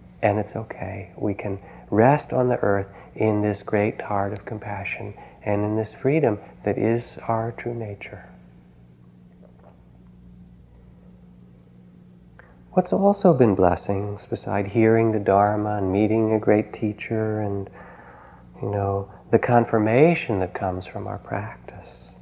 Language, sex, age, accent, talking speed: English, male, 40-59, American, 125 wpm